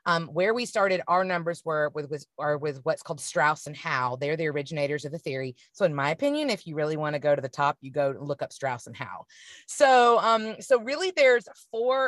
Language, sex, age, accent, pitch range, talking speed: English, female, 30-49, American, 155-220 Hz, 240 wpm